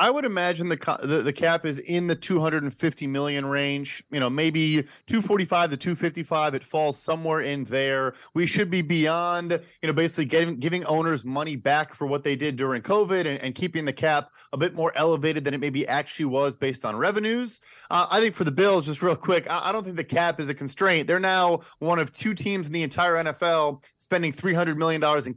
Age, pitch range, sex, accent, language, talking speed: 30-49, 145-180 Hz, male, American, English, 215 wpm